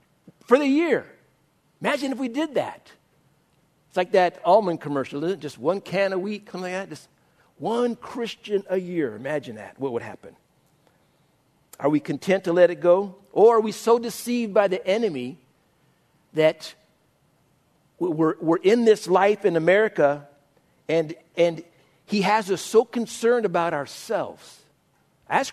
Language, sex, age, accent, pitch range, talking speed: English, male, 60-79, American, 170-225 Hz, 155 wpm